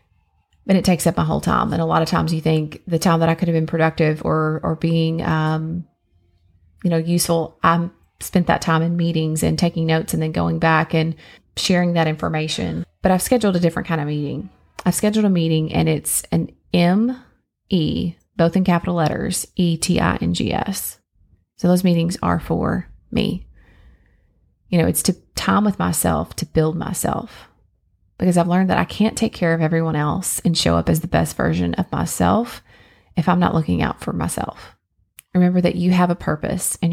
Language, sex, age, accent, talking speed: English, female, 30-49, American, 200 wpm